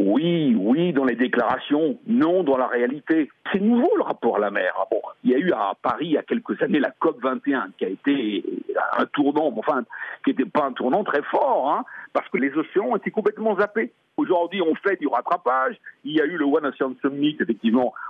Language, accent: French, French